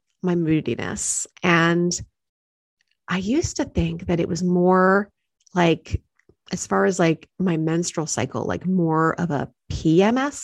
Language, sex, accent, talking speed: English, female, American, 140 wpm